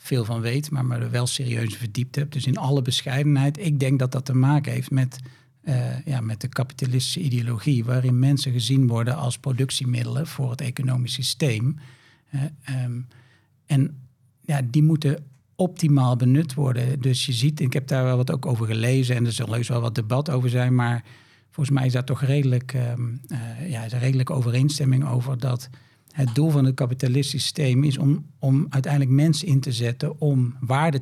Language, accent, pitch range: Dutch, Dutch, 125-140 Hz